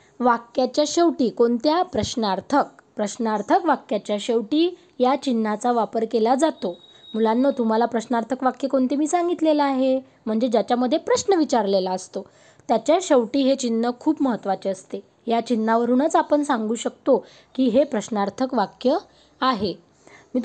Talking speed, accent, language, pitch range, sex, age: 125 wpm, native, Marathi, 230-290 Hz, female, 20-39